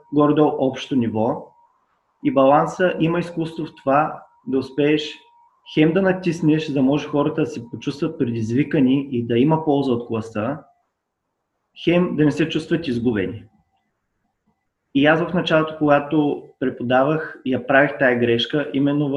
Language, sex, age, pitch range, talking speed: Bulgarian, male, 20-39, 125-155 Hz, 145 wpm